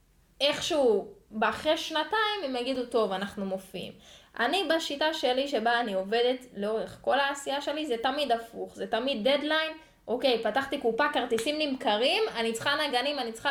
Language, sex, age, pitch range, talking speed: Hebrew, female, 10-29, 210-275 Hz, 150 wpm